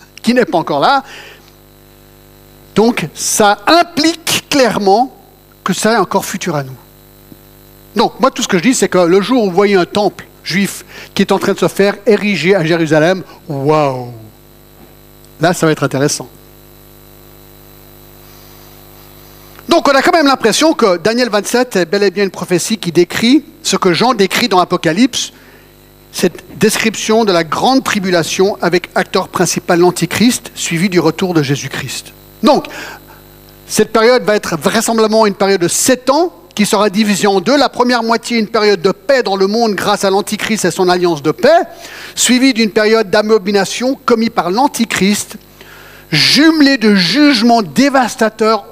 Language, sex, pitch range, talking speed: French, male, 155-225 Hz, 165 wpm